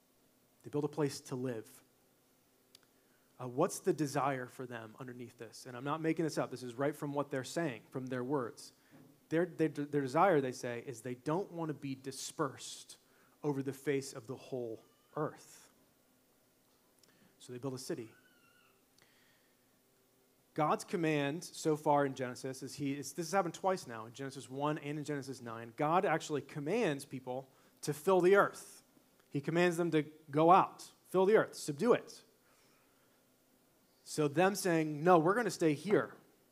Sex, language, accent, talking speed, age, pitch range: male, English, American, 170 wpm, 30-49, 130-160 Hz